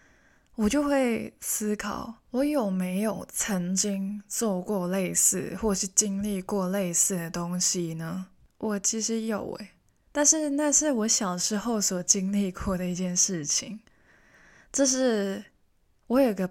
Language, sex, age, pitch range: Chinese, female, 20-39, 185-225 Hz